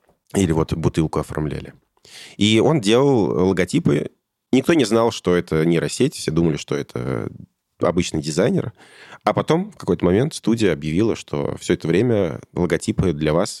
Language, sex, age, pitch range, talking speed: Russian, male, 20-39, 80-105 Hz, 150 wpm